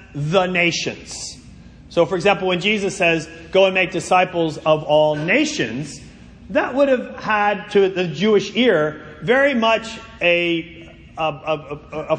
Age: 40-59